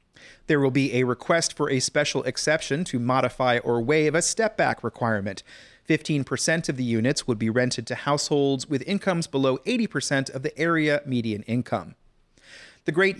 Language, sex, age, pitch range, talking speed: English, male, 40-59, 125-165 Hz, 165 wpm